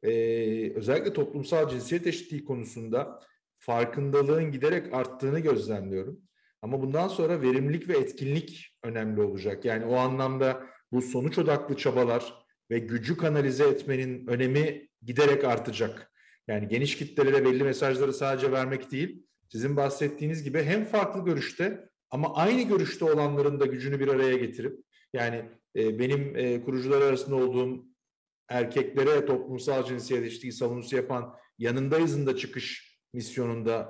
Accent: native